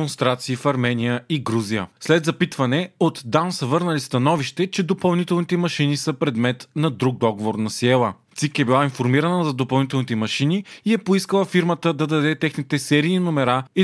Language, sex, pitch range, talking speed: Bulgarian, male, 125-170 Hz, 170 wpm